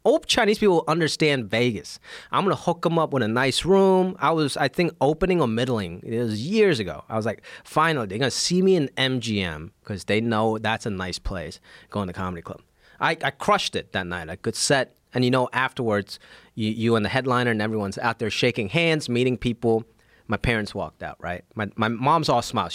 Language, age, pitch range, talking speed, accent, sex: English, 30-49, 100-140 Hz, 220 wpm, American, male